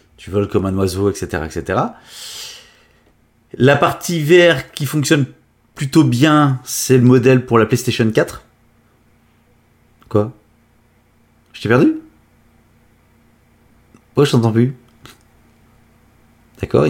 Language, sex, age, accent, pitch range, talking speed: French, male, 30-49, French, 105-130 Hz, 110 wpm